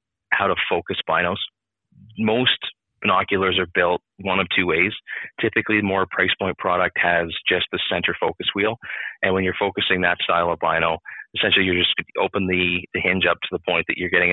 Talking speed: 190 wpm